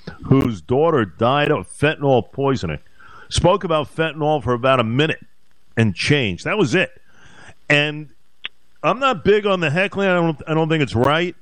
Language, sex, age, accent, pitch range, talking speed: English, male, 50-69, American, 135-200 Hz, 170 wpm